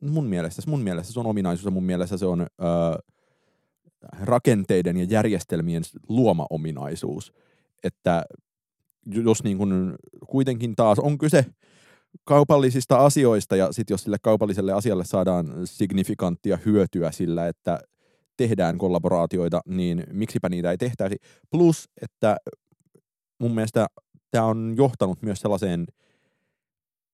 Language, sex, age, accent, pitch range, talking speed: Finnish, male, 30-49, native, 90-115 Hz, 115 wpm